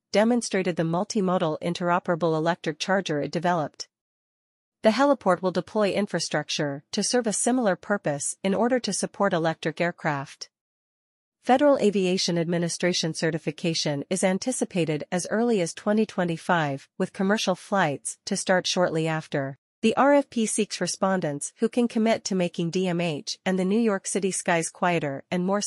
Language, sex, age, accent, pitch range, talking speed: English, female, 40-59, American, 165-200 Hz, 140 wpm